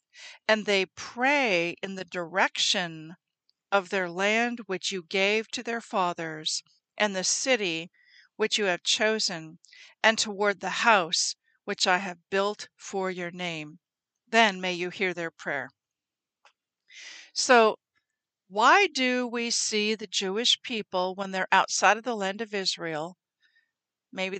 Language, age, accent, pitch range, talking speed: English, 50-69, American, 185-240 Hz, 140 wpm